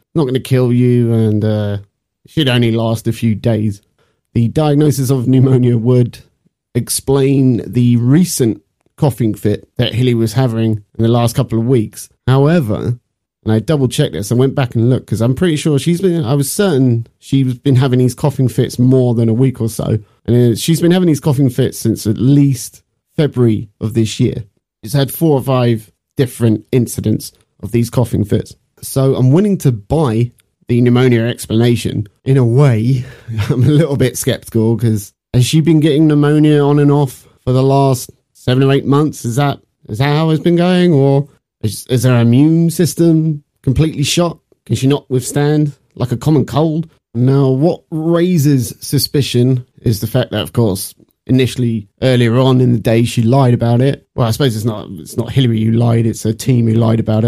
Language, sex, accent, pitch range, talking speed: English, male, British, 115-140 Hz, 190 wpm